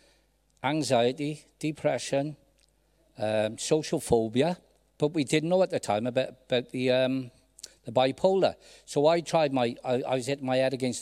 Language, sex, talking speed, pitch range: English, male, 160 wpm, 115-145 Hz